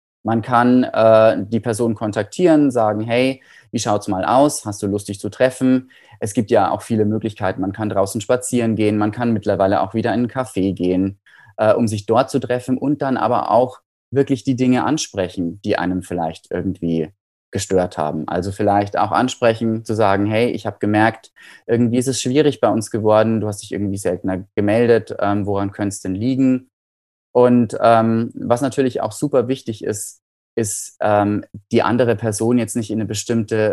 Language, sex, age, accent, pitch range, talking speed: German, male, 20-39, German, 100-120 Hz, 185 wpm